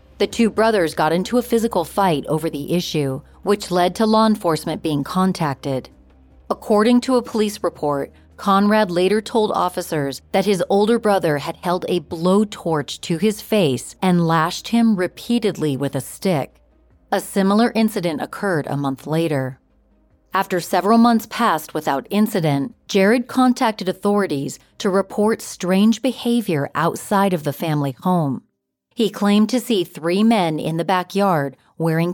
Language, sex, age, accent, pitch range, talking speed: English, female, 40-59, American, 150-210 Hz, 150 wpm